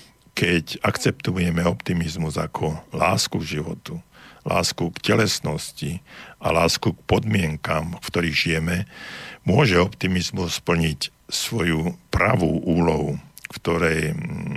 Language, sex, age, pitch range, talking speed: Slovak, male, 60-79, 80-90 Hz, 100 wpm